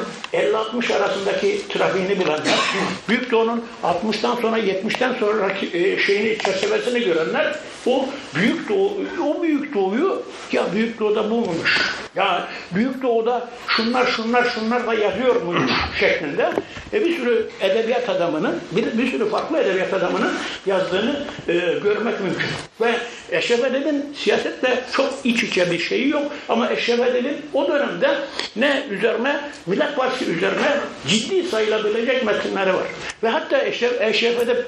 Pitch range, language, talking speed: 215-280 Hz, Turkish, 130 wpm